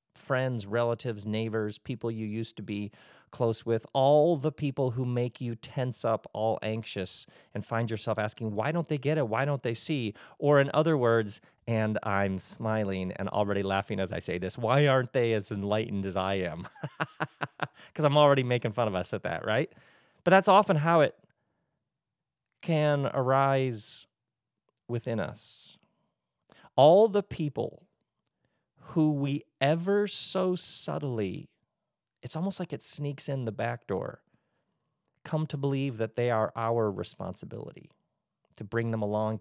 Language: English